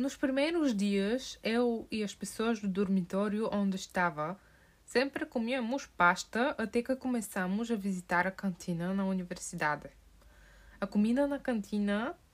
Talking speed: 130 wpm